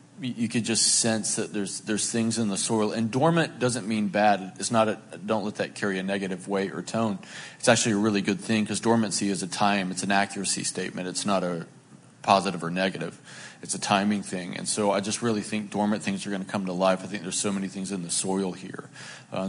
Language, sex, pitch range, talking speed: English, male, 95-115 Hz, 240 wpm